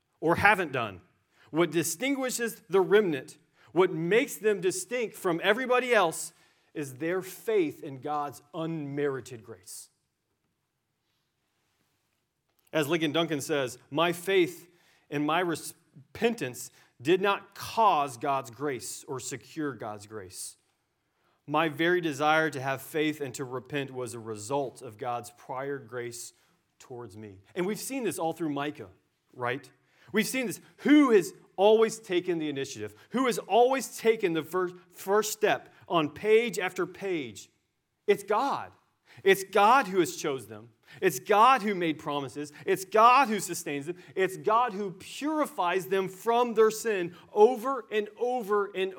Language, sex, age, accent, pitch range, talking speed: English, male, 30-49, American, 140-215 Hz, 140 wpm